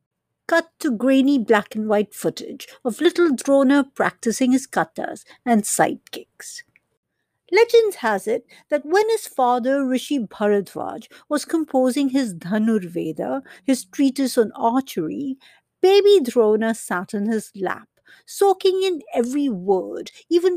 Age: 60-79